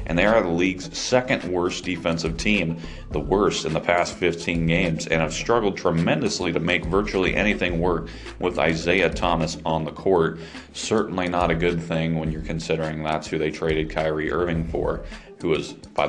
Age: 30-49